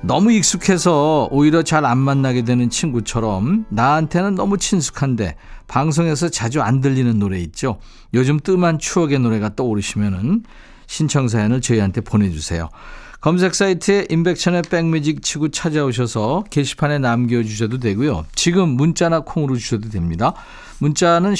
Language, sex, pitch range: Korean, male, 115-170 Hz